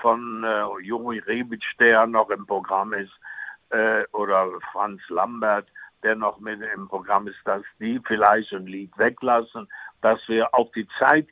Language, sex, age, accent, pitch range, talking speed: German, male, 60-79, German, 110-140 Hz, 160 wpm